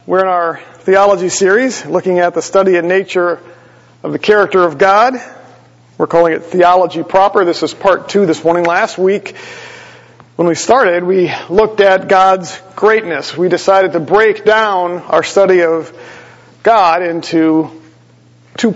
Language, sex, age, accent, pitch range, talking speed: English, male, 40-59, American, 160-190 Hz, 155 wpm